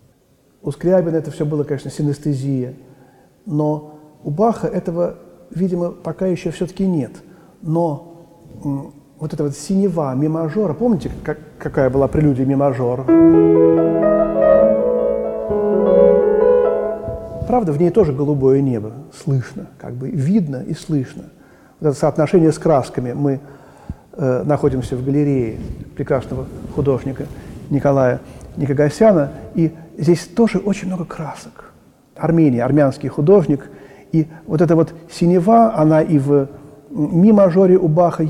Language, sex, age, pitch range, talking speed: Russian, male, 40-59, 140-180 Hz, 120 wpm